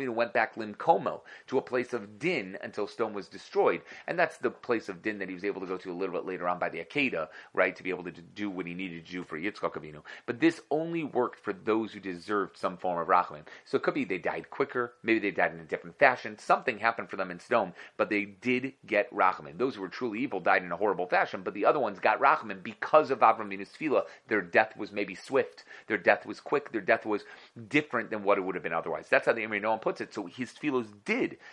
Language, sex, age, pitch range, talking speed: English, male, 30-49, 95-130 Hz, 255 wpm